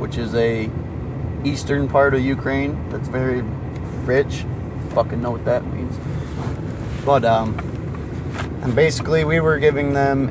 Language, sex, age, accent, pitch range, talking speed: English, male, 30-49, American, 120-140 Hz, 135 wpm